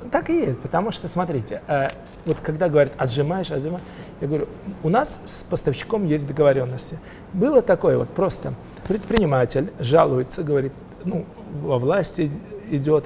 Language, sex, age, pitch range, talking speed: Russian, male, 40-59, 145-185 Hz, 140 wpm